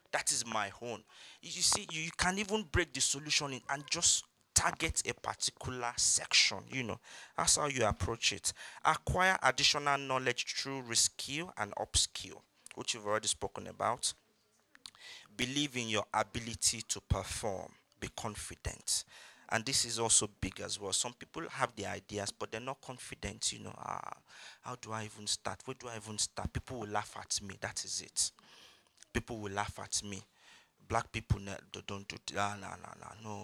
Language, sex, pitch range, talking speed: English, male, 100-130 Hz, 180 wpm